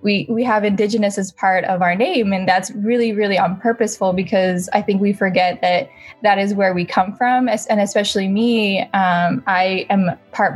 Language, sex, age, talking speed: English, female, 10-29, 195 wpm